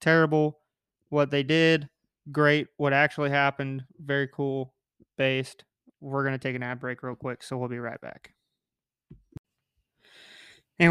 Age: 30-49